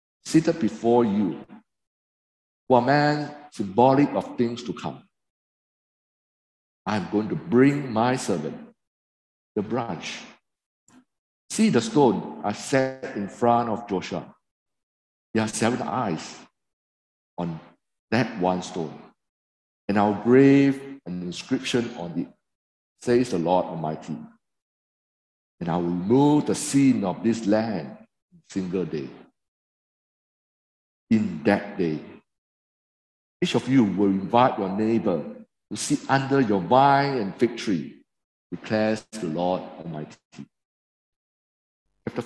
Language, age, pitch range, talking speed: English, 50-69, 90-135 Hz, 120 wpm